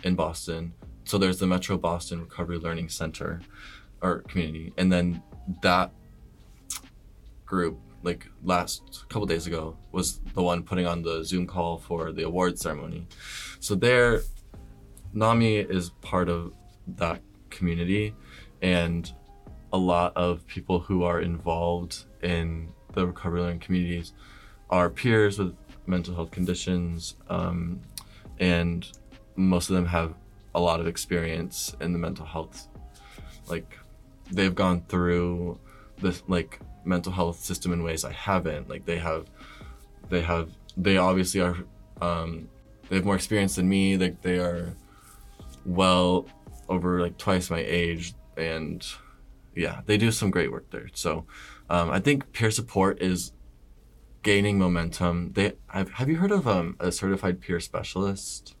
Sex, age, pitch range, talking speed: male, 20-39, 85-95 Hz, 145 wpm